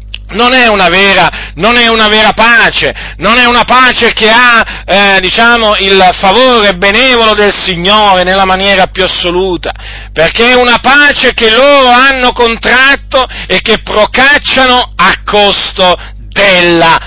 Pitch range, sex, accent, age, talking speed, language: 195-250 Hz, male, native, 40-59, 125 wpm, Italian